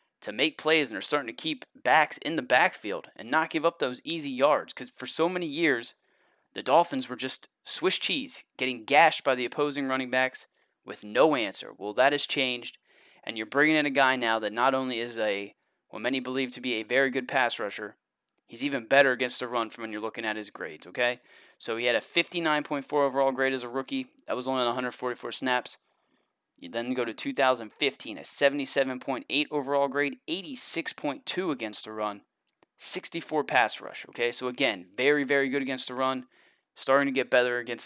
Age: 20-39